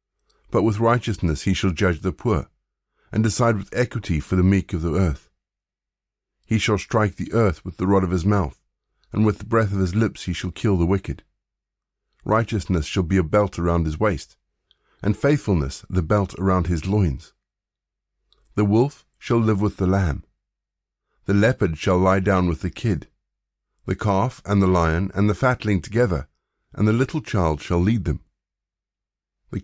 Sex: male